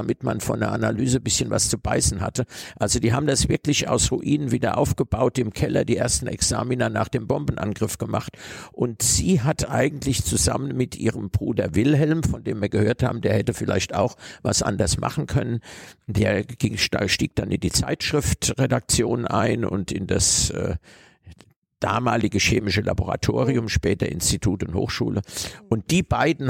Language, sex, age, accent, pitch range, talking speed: German, male, 50-69, German, 105-130 Hz, 165 wpm